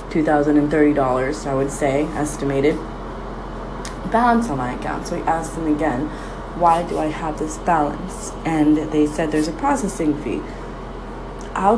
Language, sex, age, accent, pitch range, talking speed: English, female, 20-39, American, 150-175 Hz, 145 wpm